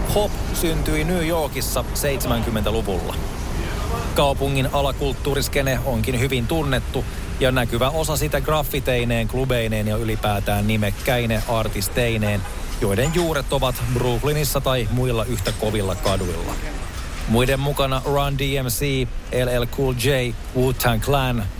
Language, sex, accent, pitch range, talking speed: Finnish, male, native, 110-135 Hz, 105 wpm